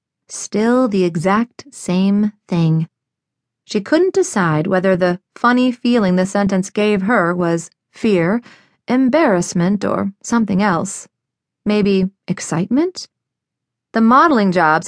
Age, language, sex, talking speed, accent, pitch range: 30-49, English, female, 110 wpm, American, 180-240 Hz